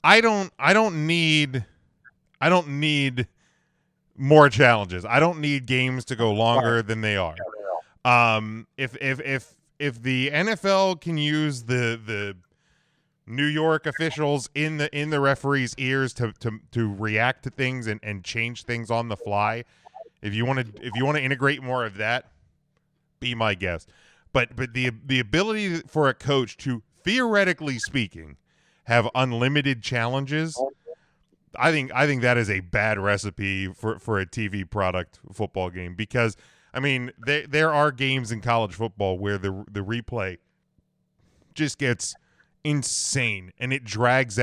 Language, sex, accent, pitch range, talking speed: English, male, American, 115-150 Hz, 160 wpm